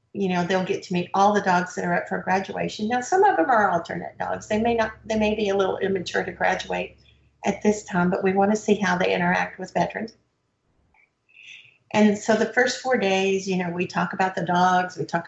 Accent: American